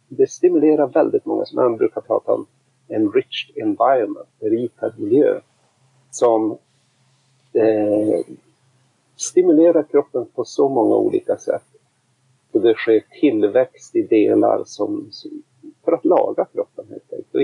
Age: 50-69